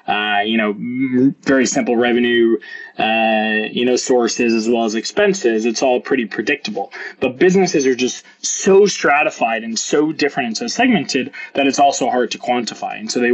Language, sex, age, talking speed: English, male, 20-39, 175 wpm